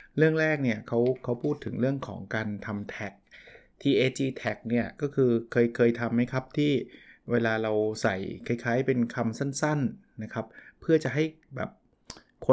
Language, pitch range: Thai, 115-140 Hz